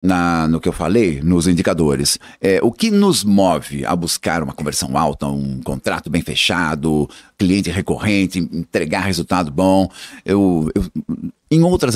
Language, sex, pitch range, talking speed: Portuguese, male, 85-115 Hz, 130 wpm